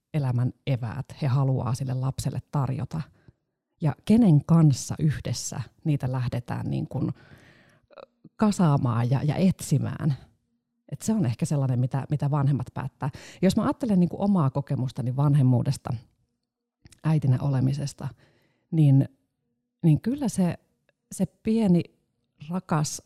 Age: 30-49